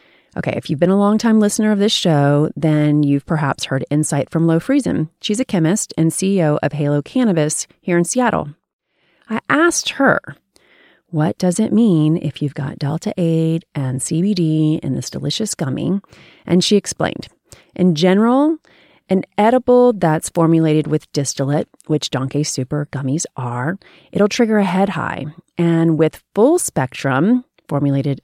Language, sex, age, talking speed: English, female, 30-49, 155 wpm